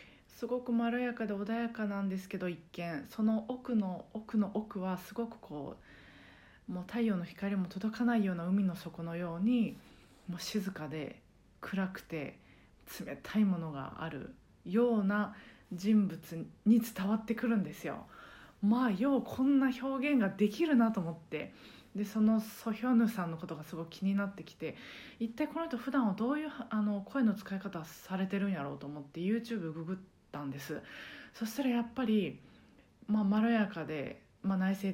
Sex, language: female, Japanese